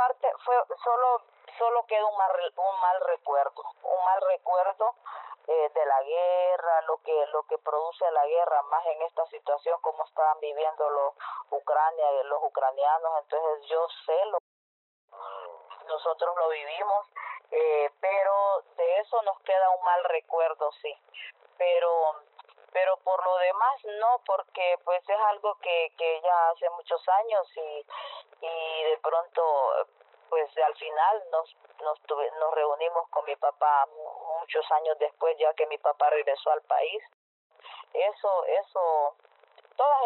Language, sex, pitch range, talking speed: Spanish, female, 155-200 Hz, 145 wpm